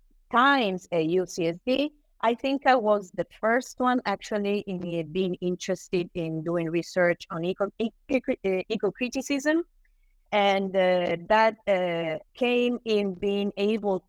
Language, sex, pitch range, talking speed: English, female, 155-205 Hz, 115 wpm